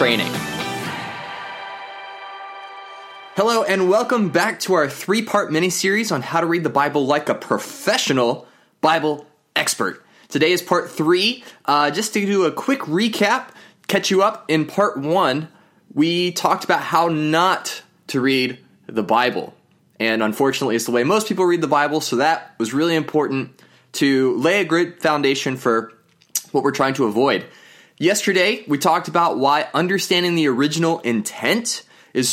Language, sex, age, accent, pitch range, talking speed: English, male, 20-39, American, 135-180 Hz, 150 wpm